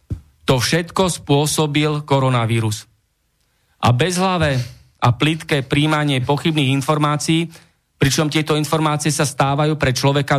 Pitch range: 130-160 Hz